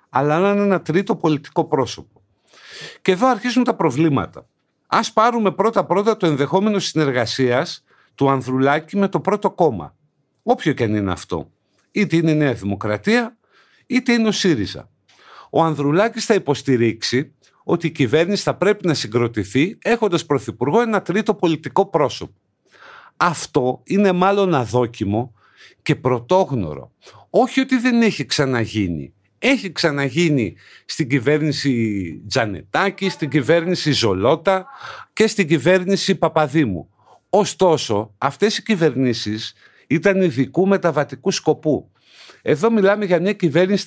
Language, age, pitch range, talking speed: Greek, 50-69, 125-190 Hz, 125 wpm